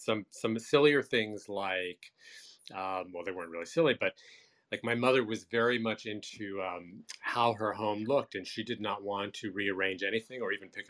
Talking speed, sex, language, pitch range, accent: 195 wpm, male, English, 100-130 Hz, American